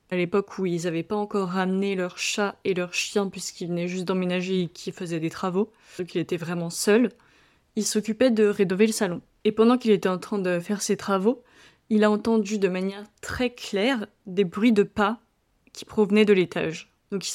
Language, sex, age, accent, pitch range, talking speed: English, female, 20-39, French, 185-215 Hz, 210 wpm